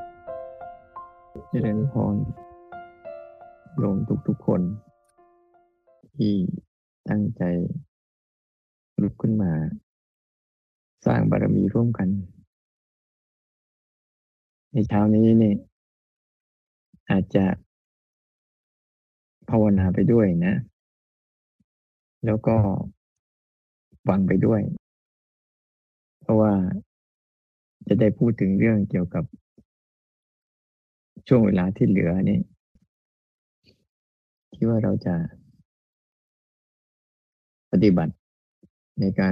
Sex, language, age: male, Thai, 30-49